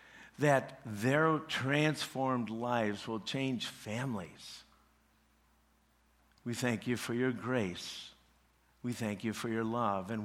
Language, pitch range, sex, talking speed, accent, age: English, 110-155 Hz, male, 115 wpm, American, 60-79